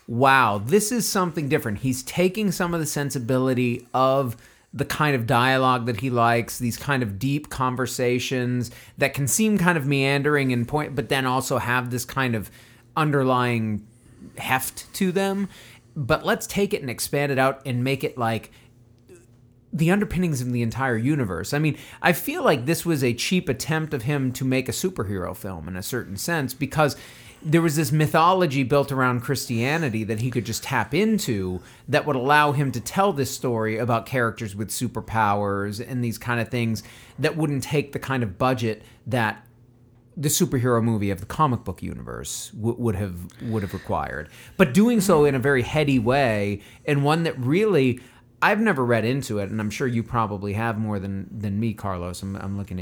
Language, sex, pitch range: English, male, 115-145 Hz